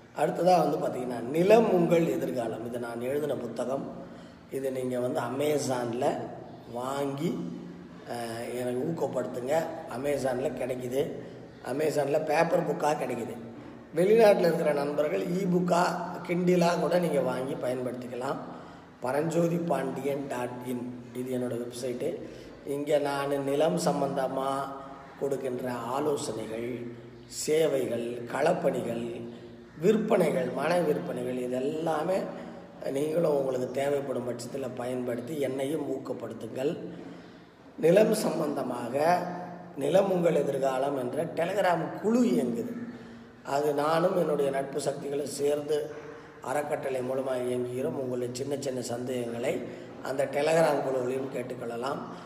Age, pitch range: 20-39, 125-160 Hz